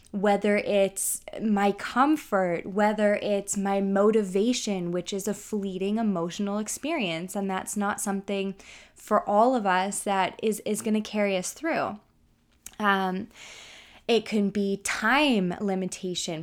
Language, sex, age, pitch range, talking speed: English, female, 20-39, 190-225 Hz, 130 wpm